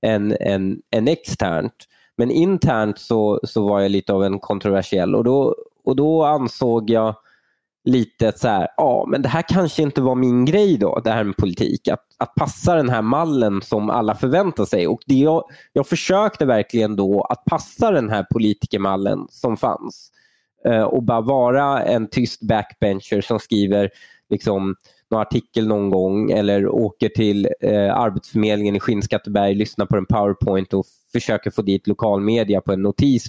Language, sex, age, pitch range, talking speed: Swedish, male, 20-39, 100-130 Hz, 175 wpm